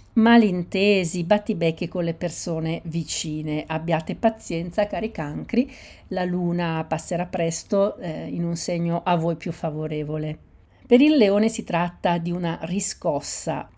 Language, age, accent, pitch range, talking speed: Italian, 50-69, native, 170-210 Hz, 130 wpm